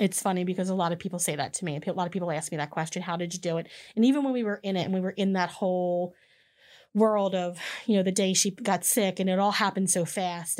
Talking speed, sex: 295 wpm, female